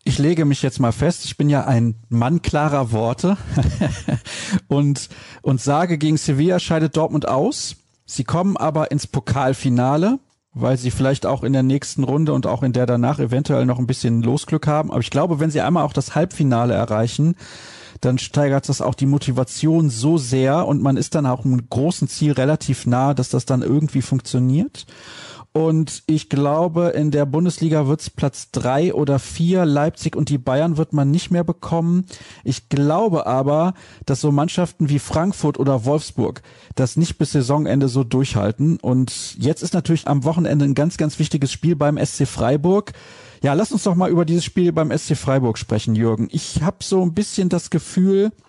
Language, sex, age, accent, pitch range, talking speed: German, male, 40-59, German, 135-165 Hz, 185 wpm